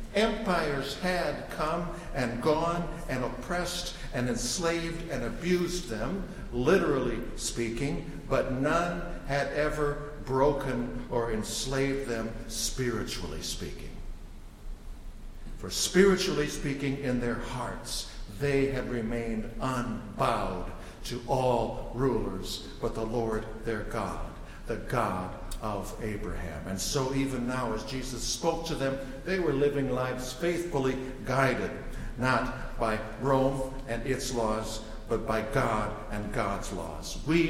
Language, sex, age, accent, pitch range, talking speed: English, male, 60-79, American, 110-140 Hz, 120 wpm